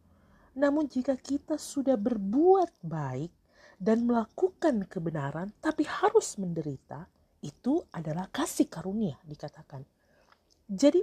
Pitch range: 175-280 Hz